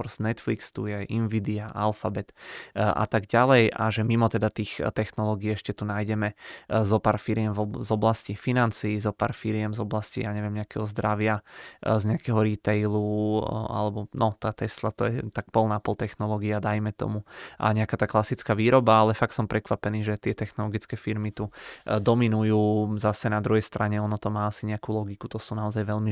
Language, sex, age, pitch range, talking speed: Czech, male, 20-39, 105-115 Hz, 175 wpm